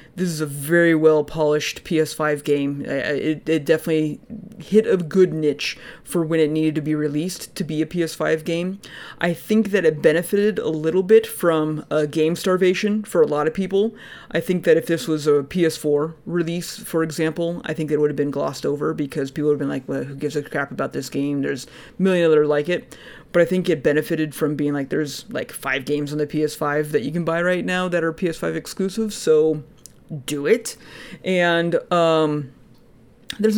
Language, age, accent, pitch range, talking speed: English, 30-49, American, 150-180 Hz, 200 wpm